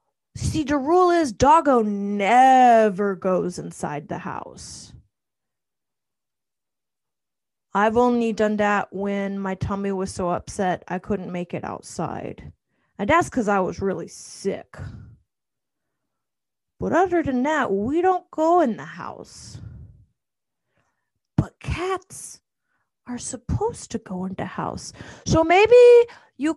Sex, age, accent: female, 20-39, American